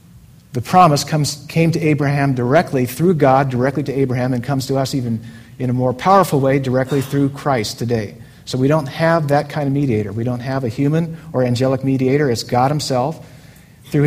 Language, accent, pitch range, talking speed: English, American, 130-170 Hz, 190 wpm